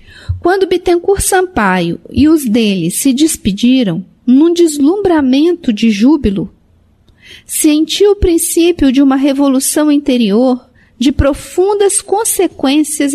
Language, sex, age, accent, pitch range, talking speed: Portuguese, female, 50-69, Brazilian, 230-305 Hz, 100 wpm